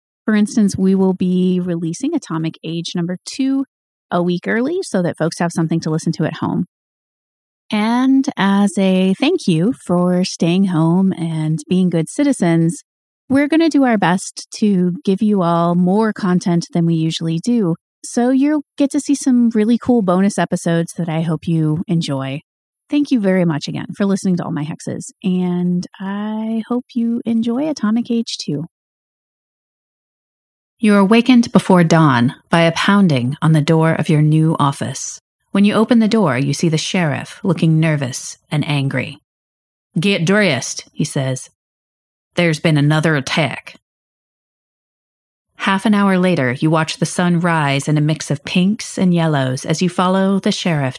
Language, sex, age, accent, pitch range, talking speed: English, female, 30-49, American, 155-200 Hz, 165 wpm